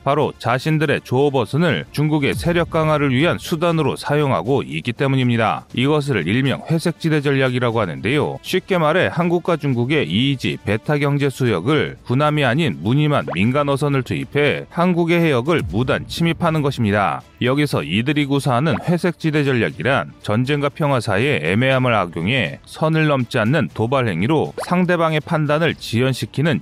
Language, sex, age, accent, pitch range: Korean, male, 30-49, native, 125-155 Hz